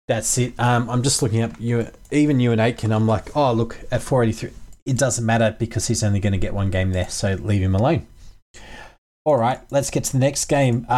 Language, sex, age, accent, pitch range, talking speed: English, male, 20-39, Australian, 105-125 Hz, 230 wpm